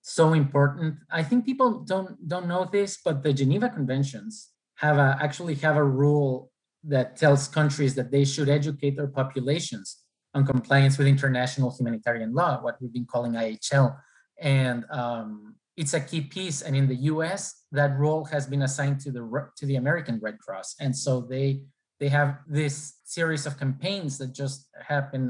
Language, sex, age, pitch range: English, male, 20-39, 125-150 Hz